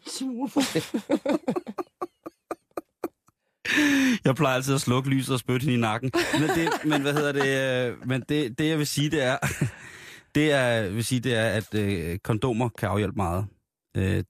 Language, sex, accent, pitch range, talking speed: Danish, male, native, 100-125 Hz, 150 wpm